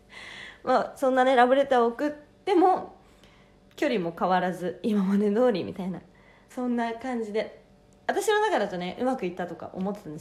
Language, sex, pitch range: Japanese, female, 180-240 Hz